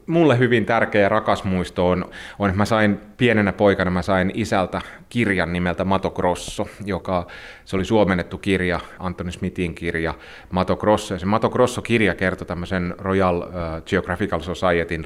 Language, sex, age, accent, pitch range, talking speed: Finnish, male, 30-49, native, 85-100 Hz, 145 wpm